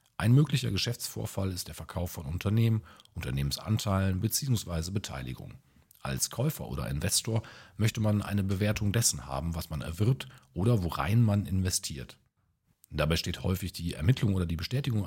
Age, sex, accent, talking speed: 40-59, male, German, 145 wpm